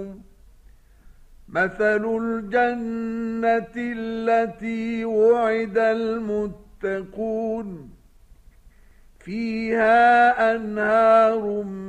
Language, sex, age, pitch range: Arabic, male, 50-69, 205-225 Hz